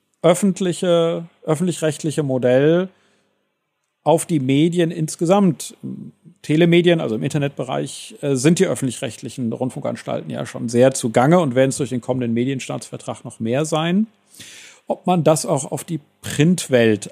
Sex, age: male, 40-59